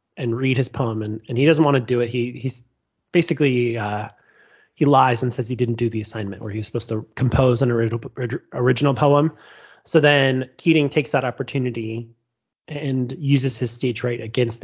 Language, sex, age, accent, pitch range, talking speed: English, male, 30-49, American, 115-140 Hz, 195 wpm